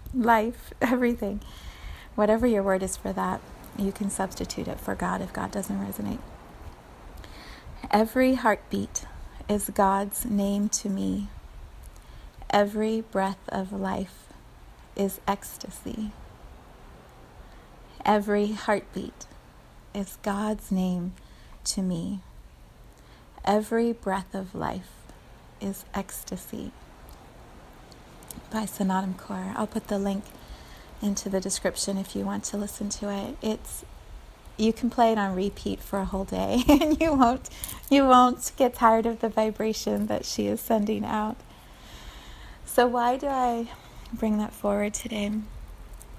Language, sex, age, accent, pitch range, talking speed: English, female, 30-49, American, 195-225 Hz, 125 wpm